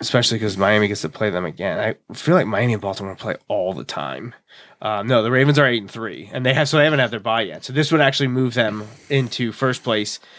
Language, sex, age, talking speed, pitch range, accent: English, male, 20-39, 260 wpm, 115-145 Hz, American